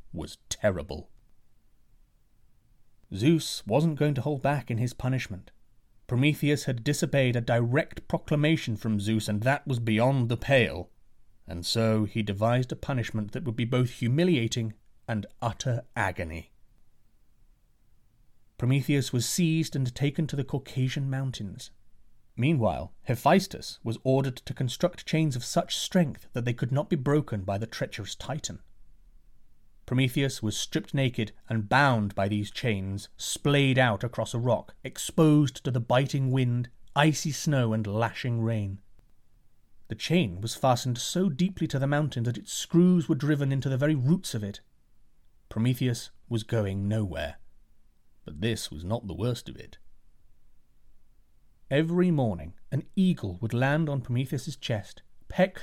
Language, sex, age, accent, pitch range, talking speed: English, male, 30-49, British, 110-145 Hz, 145 wpm